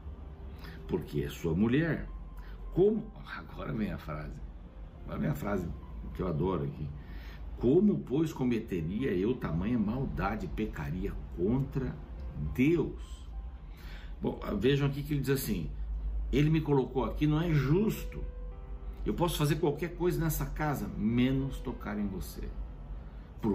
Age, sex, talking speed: 60-79, male, 130 wpm